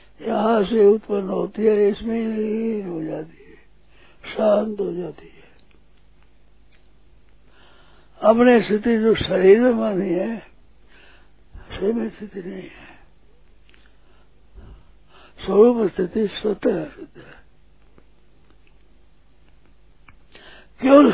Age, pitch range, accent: 60-79, 185-220 Hz, native